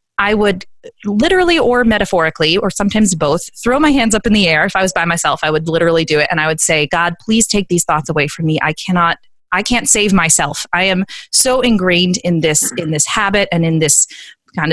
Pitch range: 160-200 Hz